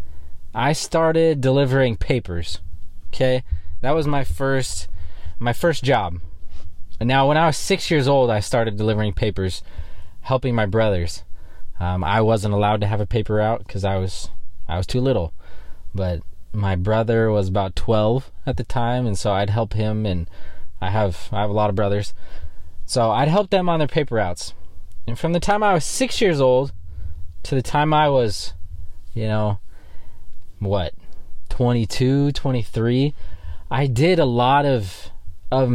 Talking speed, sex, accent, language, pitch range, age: 165 wpm, male, American, English, 85-130 Hz, 20-39